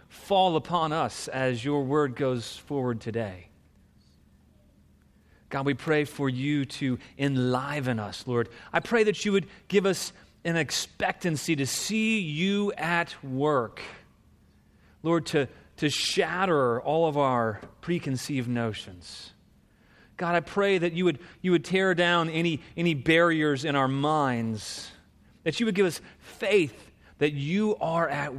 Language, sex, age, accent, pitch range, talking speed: English, male, 30-49, American, 115-170 Hz, 140 wpm